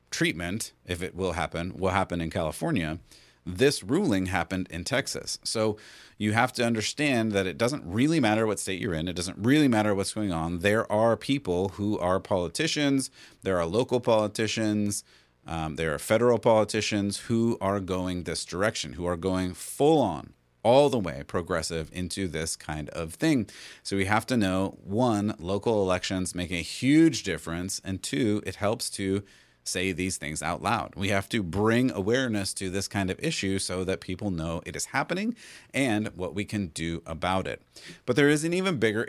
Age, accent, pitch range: 30-49, American, 90-110 Hz